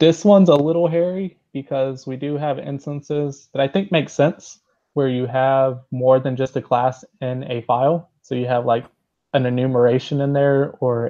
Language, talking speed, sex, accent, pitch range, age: English, 190 wpm, male, American, 120-140 Hz, 20-39